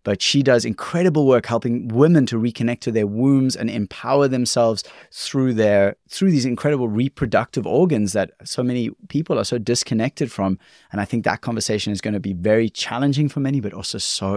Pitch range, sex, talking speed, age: 100-125 Hz, male, 190 wpm, 20-39